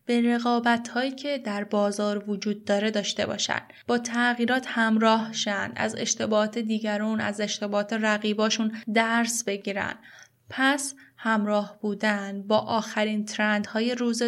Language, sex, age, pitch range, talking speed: Persian, female, 10-29, 205-235 Hz, 120 wpm